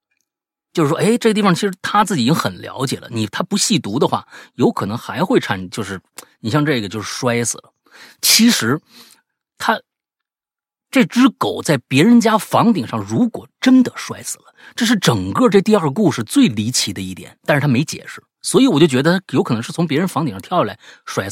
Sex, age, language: male, 30-49, Chinese